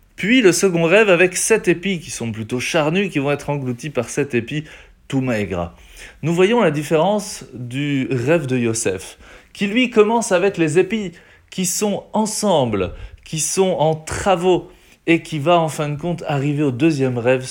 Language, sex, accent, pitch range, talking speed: French, male, French, 115-170 Hz, 180 wpm